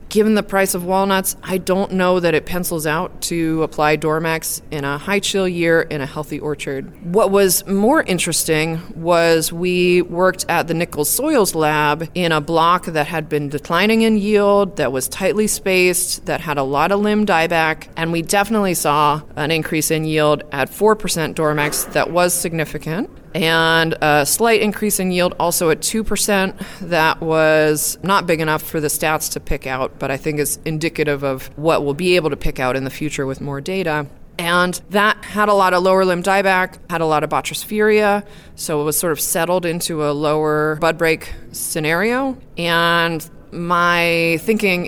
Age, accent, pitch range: 30-49, American, 155-185 Hz